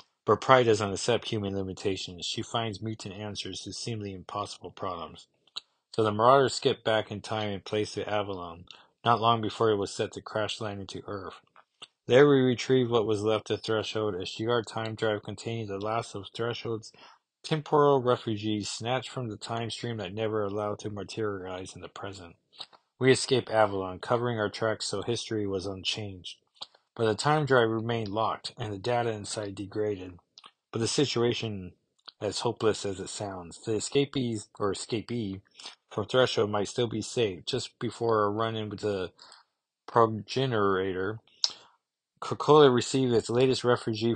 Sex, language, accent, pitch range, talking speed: male, English, American, 100-120 Hz, 165 wpm